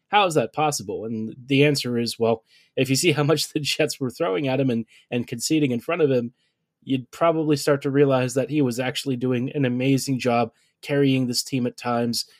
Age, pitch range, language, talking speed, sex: 20-39, 125-150 Hz, English, 220 wpm, male